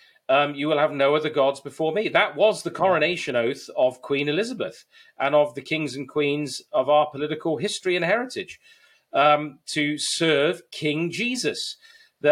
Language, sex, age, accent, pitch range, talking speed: English, male, 40-59, British, 140-190 Hz, 165 wpm